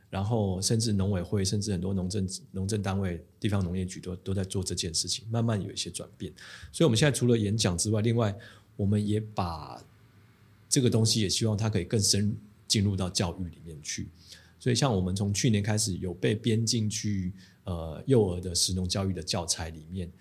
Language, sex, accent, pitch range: Chinese, male, native, 95-115 Hz